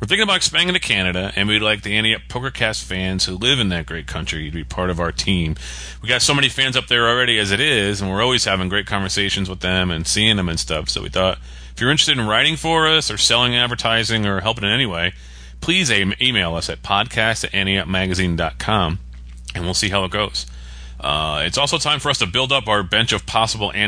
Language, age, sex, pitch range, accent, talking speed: English, 30-49, male, 85-130 Hz, American, 240 wpm